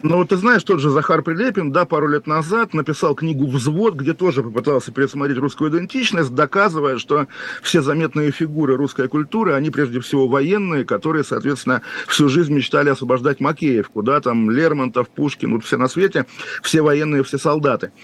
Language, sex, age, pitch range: Russian, male, 40-59, 125-155 Hz